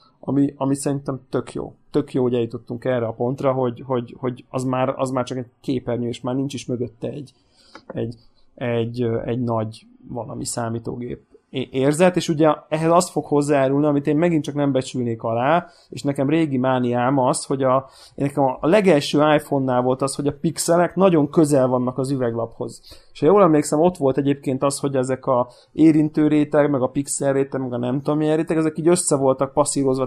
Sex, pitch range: male, 125-150 Hz